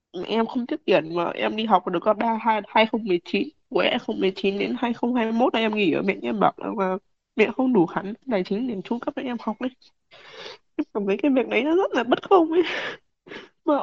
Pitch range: 170-255 Hz